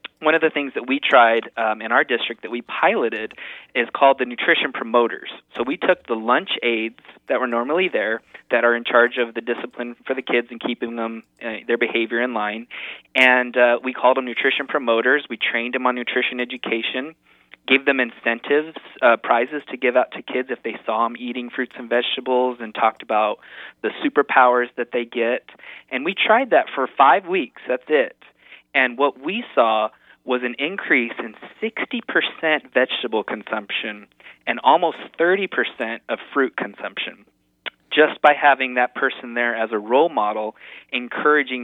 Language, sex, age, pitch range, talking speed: English, male, 20-39, 115-135 Hz, 175 wpm